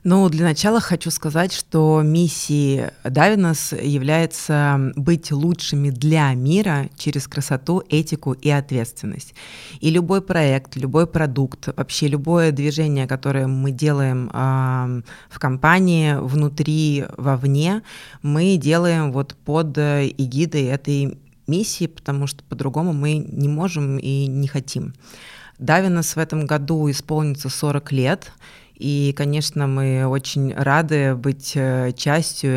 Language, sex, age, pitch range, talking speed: Russian, female, 20-39, 135-160 Hz, 120 wpm